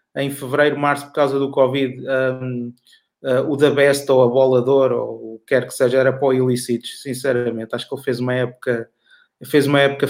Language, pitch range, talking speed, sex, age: Portuguese, 140-175 Hz, 200 wpm, male, 20-39